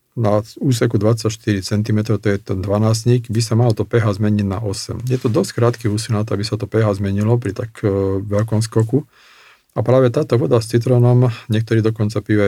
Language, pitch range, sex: Slovak, 105-115 Hz, male